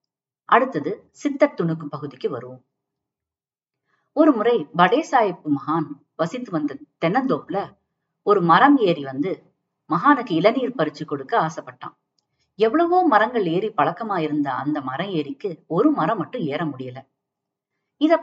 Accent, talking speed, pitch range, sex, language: native, 110 wpm, 150-225 Hz, female, Tamil